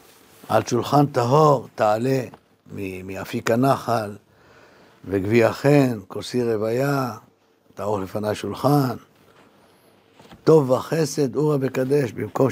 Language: Hebrew